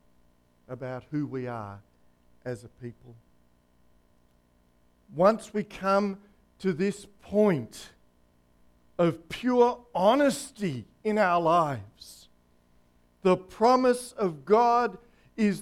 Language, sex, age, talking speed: English, male, 50-69, 90 wpm